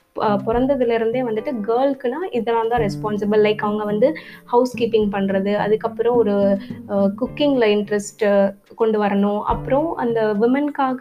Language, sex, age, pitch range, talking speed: Tamil, female, 20-39, 205-255 Hz, 115 wpm